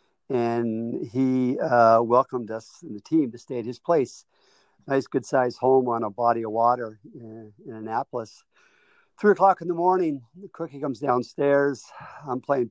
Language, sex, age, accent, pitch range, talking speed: English, male, 50-69, American, 120-170 Hz, 165 wpm